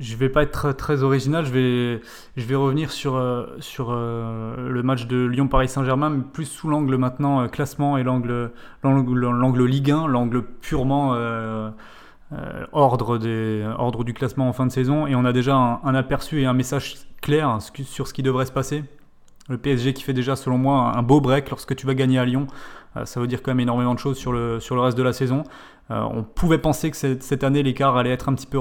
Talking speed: 225 wpm